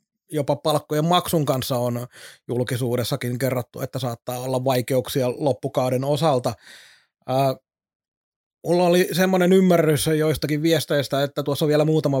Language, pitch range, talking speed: Finnish, 130-150 Hz, 120 wpm